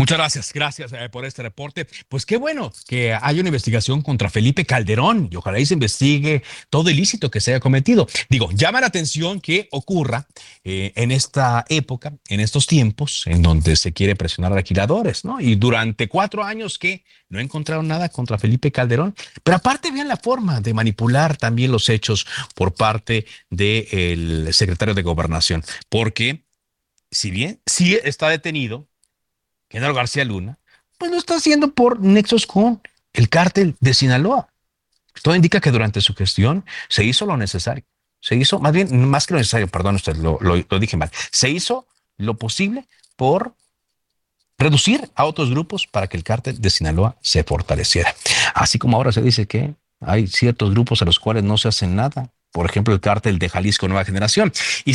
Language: Spanish